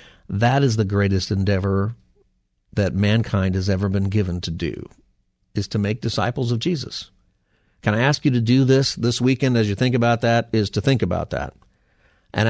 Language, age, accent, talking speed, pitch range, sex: English, 50-69, American, 185 wpm, 100-120 Hz, male